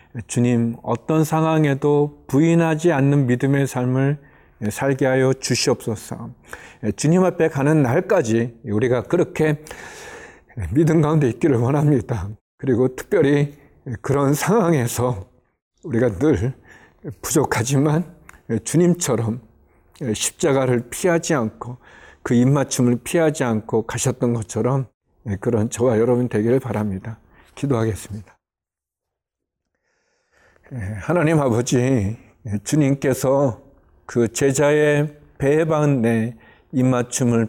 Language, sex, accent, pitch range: Korean, male, native, 115-150 Hz